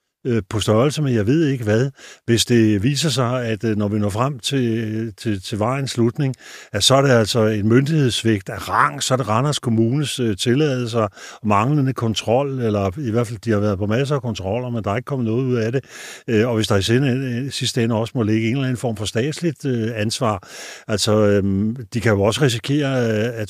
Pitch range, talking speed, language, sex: 110-135 Hz, 210 wpm, Danish, male